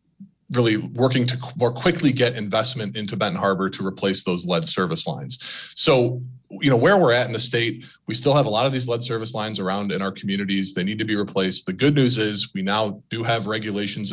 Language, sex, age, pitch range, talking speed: English, male, 20-39, 100-125 Hz, 225 wpm